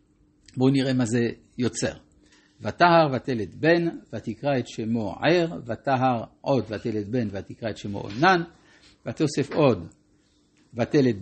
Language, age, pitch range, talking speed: Hebrew, 60-79, 105-140 Hz, 125 wpm